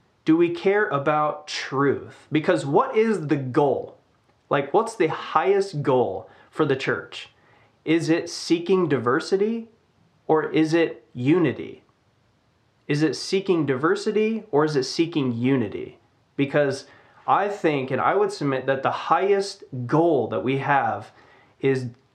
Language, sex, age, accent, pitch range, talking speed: English, male, 20-39, American, 120-165 Hz, 135 wpm